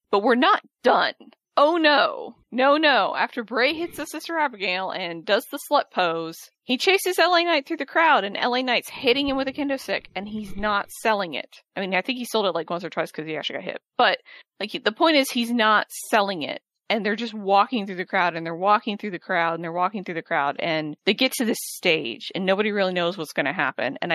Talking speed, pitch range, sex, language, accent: 245 wpm, 180-255 Hz, female, English, American